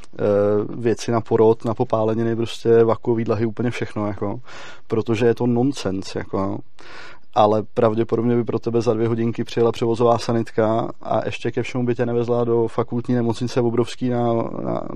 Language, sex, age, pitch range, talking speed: Czech, male, 20-39, 115-125 Hz, 165 wpm